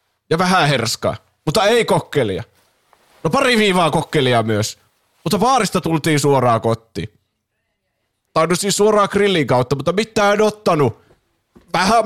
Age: 20-39